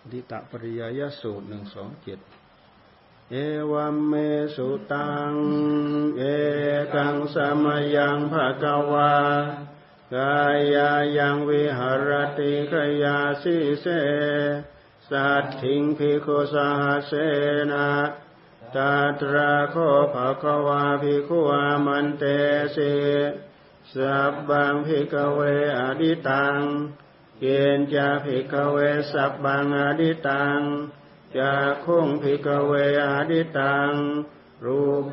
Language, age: Thai, 50-69